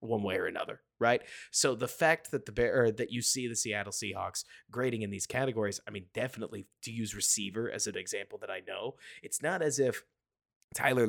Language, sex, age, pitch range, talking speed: English, male, 20-39, 100-125 Hz, 205 wpm